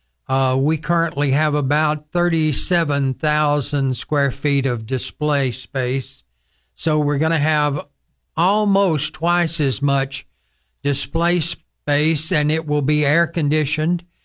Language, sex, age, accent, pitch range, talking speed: English, male, 60-79, American, 140-160 Hz, 115 wpm